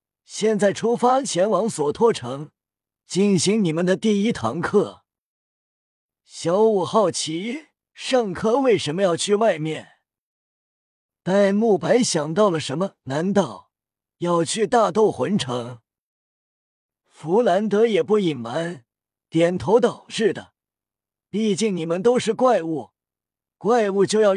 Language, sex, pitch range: Chinese, male, 155-220 Hz